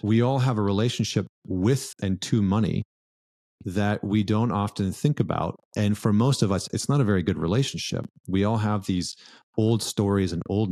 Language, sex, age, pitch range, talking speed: English, male, 30-49, 95-105 Hz, 190 wpm